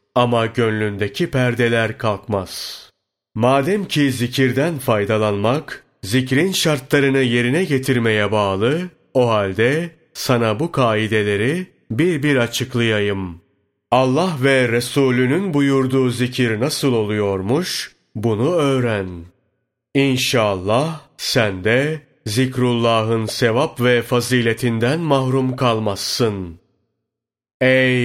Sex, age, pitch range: male, 40-59, 110-140 Hz